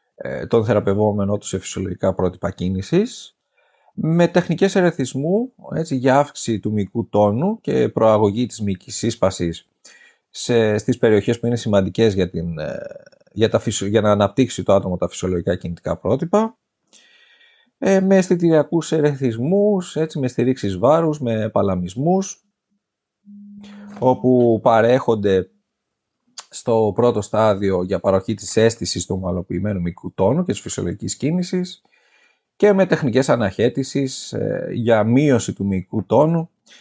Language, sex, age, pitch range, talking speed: Greek, male, 30-49, 100-145 Hz, 120 wpm